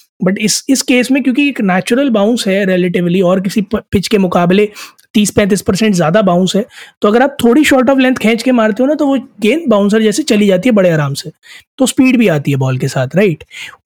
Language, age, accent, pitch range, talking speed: Hindi, 20-39, native, 185-235 Hz, 240 wpm